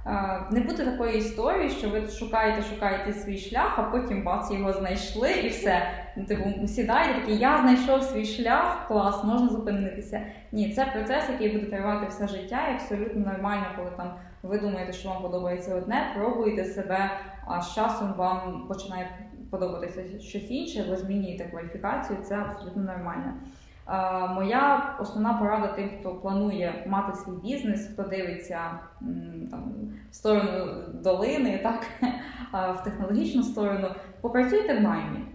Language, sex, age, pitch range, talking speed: Ukrainian, female, 20-39, 190-230 Hz, 135 wpm